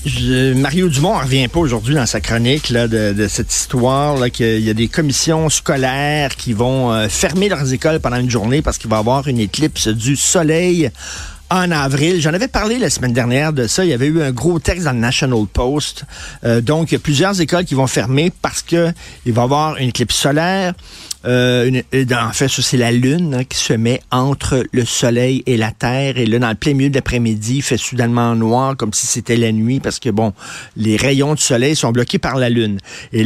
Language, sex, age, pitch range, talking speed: French, male, 50-69, 120-150 Hz, 230 wpm